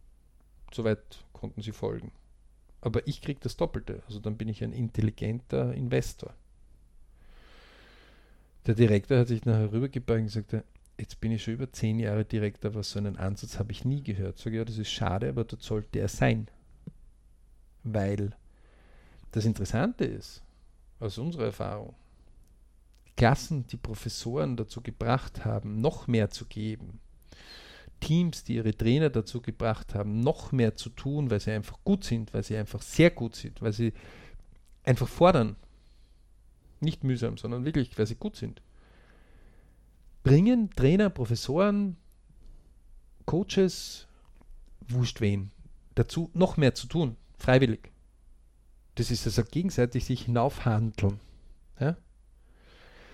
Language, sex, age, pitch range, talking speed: German, male, 50-69, 105-125 Hz, 140 wpm